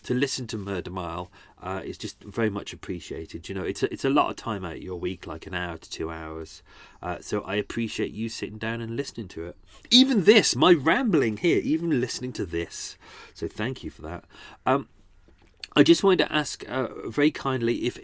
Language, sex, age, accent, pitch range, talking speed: English, male, 40-59, British, 90-125 Hz, 215 wpm